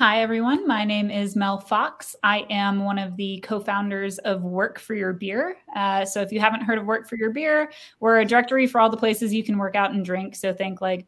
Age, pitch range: 20-39, 195-220 Hz